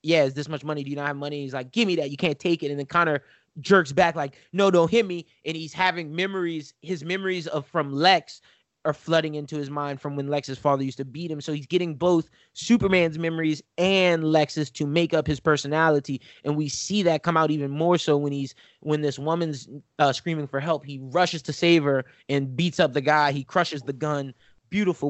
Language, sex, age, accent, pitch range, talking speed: English, male, 20-39, American, 140-165 Hz, 230 wpm